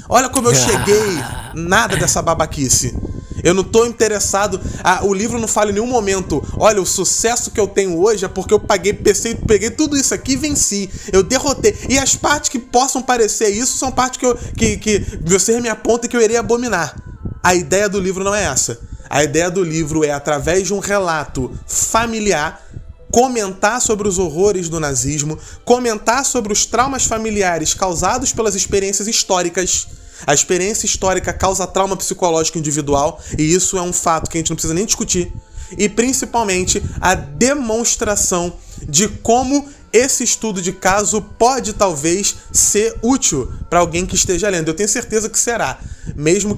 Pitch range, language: 175-225 Hz, Portuguese